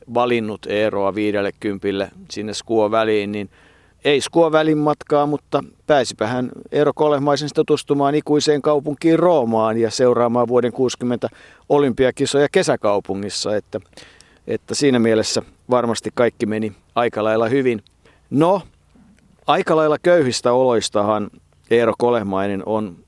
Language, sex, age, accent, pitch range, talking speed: Finnish, male, 50-69, native, 110-135 Hz, 115 wpm